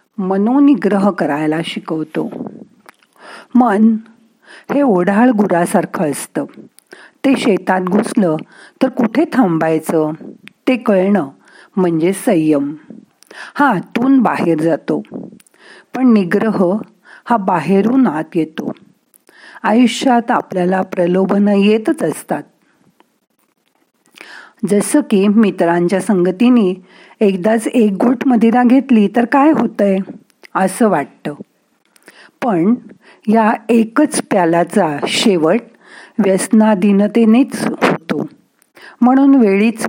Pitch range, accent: 180-245 Hz, native